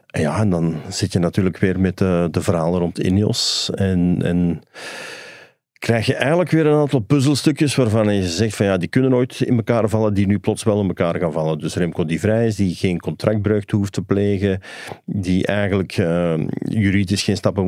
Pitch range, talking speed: 85-110 Hz, 195 wpm